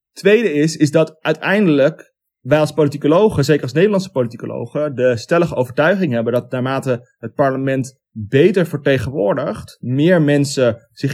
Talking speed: 135 wpm